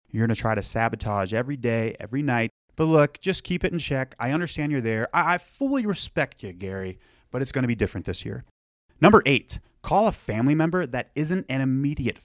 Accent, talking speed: American, 215 wpm